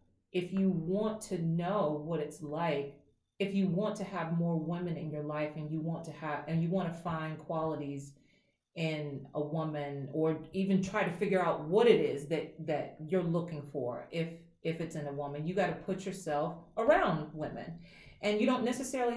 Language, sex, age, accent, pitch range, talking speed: English, female, 30-49, American, 160-200 Hz, 195 wpm